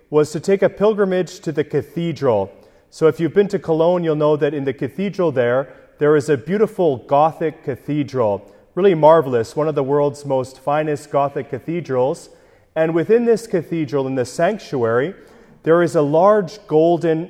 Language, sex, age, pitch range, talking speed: English, male, 30-49, 135-170 Hz, 170 wpm